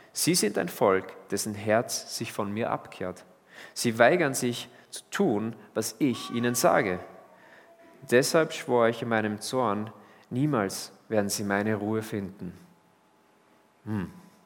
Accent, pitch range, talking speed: German, 105-145 Hz, 135 wpm